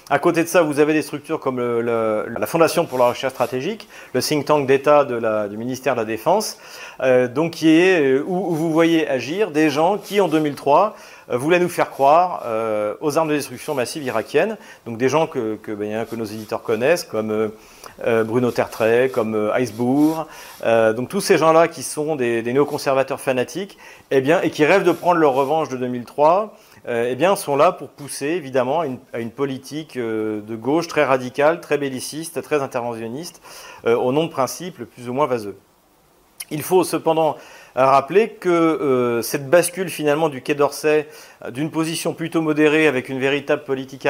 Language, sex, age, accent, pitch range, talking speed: French, male, 40-59, French, 125-155 Hz, 195 wpm